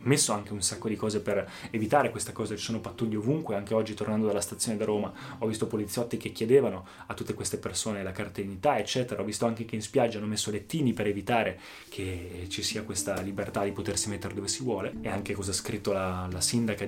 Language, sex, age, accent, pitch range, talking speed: Italian, male, 20-39, native, 105-130 Hz, 230 wpm